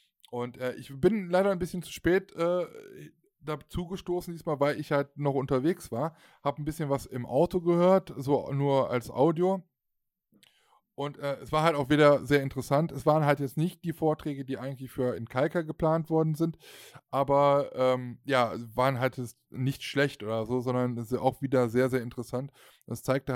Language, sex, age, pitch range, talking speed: German, male, 20-39, 125-150 Hz, 180 wpm